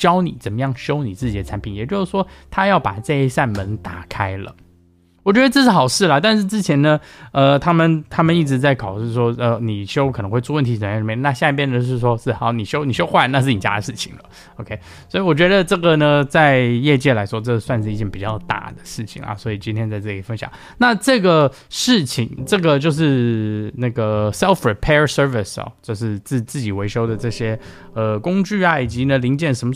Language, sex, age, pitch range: Chinese, male, 20-39, 105-140 Hz